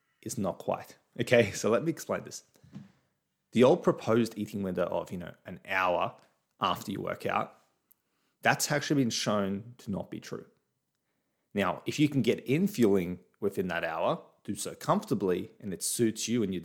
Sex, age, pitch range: male, 20-39, 100-125 Hz